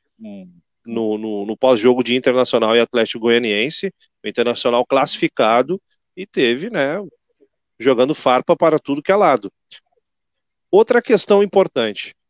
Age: 40-59